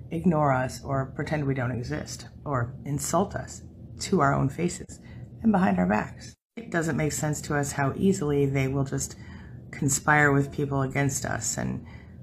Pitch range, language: 145-190 Hz, English